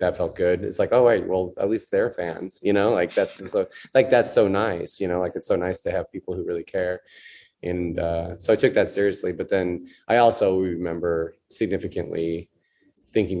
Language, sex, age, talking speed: English, male, 20-39, 210 wpm